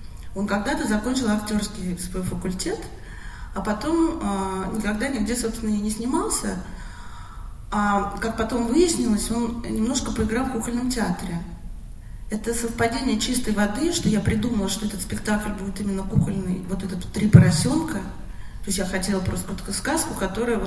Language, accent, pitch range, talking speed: Russian, native, 185-225 Hz, 140 wpm